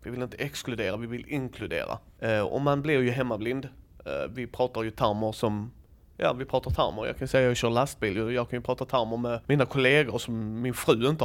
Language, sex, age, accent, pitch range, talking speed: Swedish, male, 30-49, native, 115-145 Hz, 215 wpm